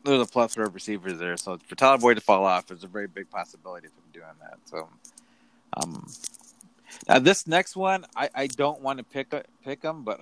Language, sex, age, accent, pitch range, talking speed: English, male, 30-49, American, 105-165 Hz, 225 wpm